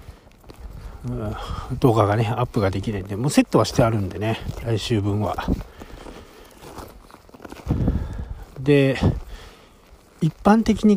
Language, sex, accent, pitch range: Japanese, male, native, 100-145 Hz